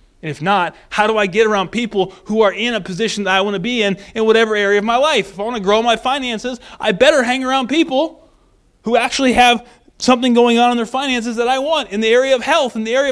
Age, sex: 20-39, male